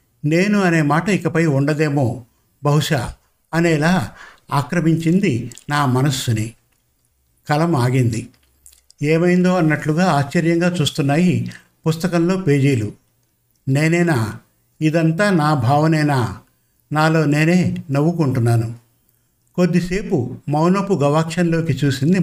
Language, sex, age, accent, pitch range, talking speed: Telugu, male, 60-79, native, 125-175 Hz, 80 wpm